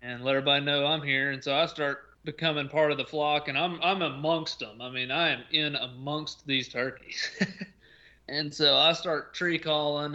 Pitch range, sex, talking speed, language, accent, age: 130-150 Hz, male, 200 wpm, English, American, 20-39